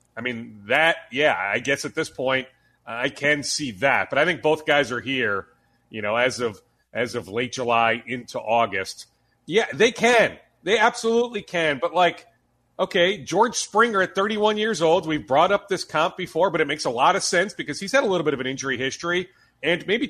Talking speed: 210 wpm